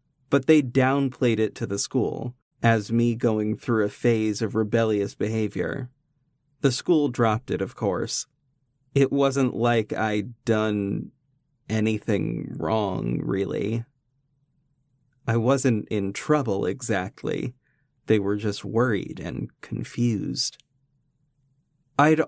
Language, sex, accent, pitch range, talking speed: English, male, American, 110-140 Hz, 115 wpm